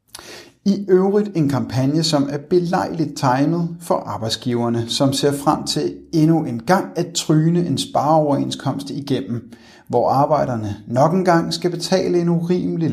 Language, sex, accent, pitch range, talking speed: Danish, male, native, 130-165 Hz, 140 wpm